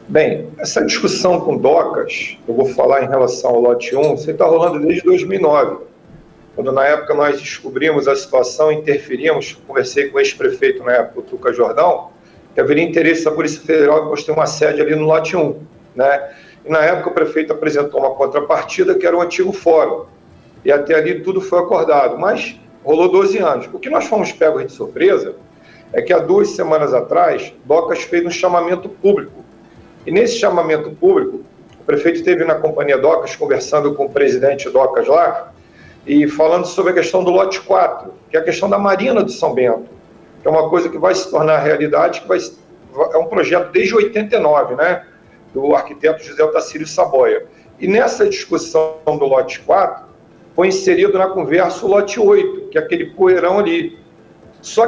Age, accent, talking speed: 40-59, Brazilian, 180 wpm